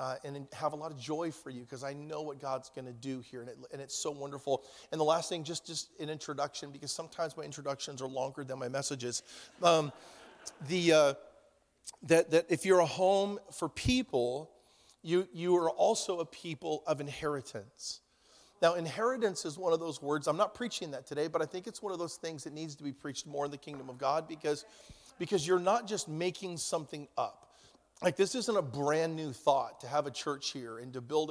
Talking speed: 215 wpm